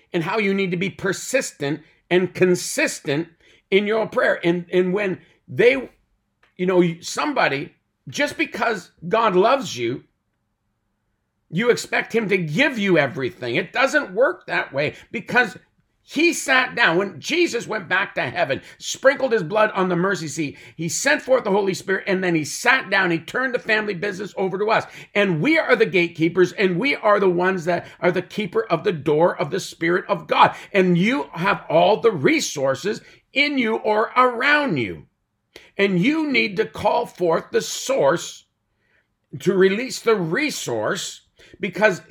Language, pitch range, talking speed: English, 165-220 Hz, 170 wpm